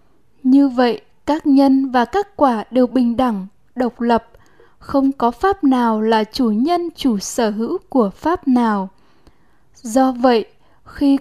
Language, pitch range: Vietnamese, 235-280 Hz